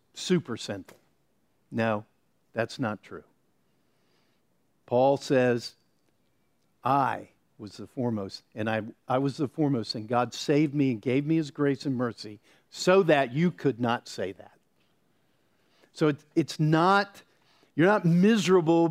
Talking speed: 135 wpm